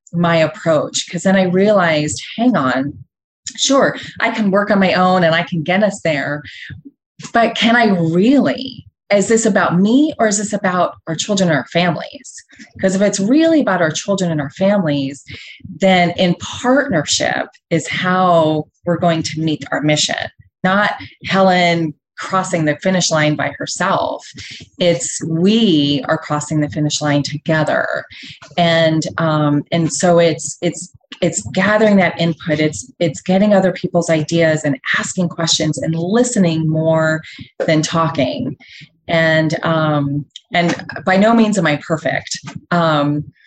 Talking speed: 150 wpm